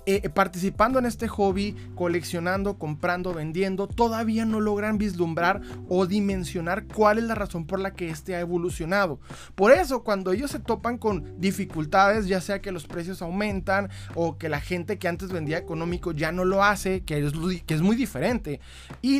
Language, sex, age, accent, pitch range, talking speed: Spanish, male, 20-39, Mexican, 170-215 Hz, 180 wpm